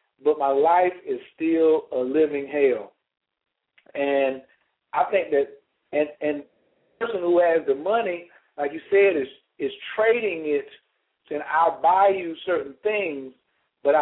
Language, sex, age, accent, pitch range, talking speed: English, male, 50-69, American, 140-205 Hz, 145 wpm